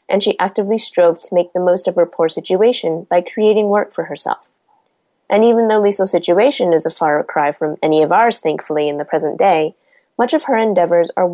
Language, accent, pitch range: English, American, 170-230 Hz